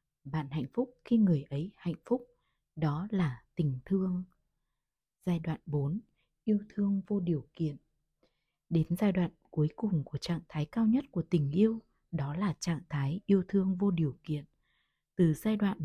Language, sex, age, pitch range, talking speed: Vietnamese, female, 20-39, 155-200 Hz, 170 wpm